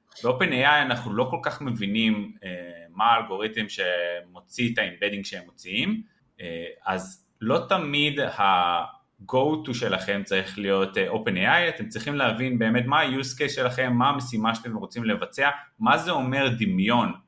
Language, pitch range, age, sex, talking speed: Hebrew, 100-140 Hz, 30-49, male, 140 wpm